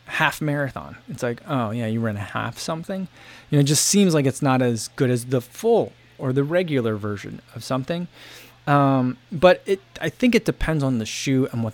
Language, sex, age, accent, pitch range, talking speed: English, male, 20-39, American, 120-145 Hz, 215 wpm